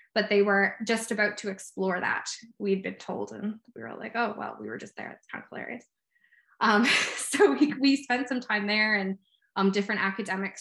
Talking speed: 210 wpm